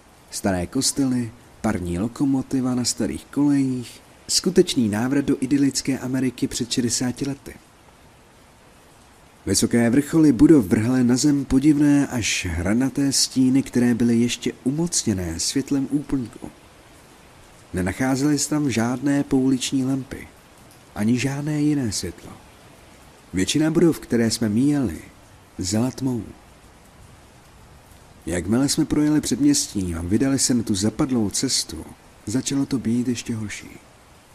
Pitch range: 110-140 Hz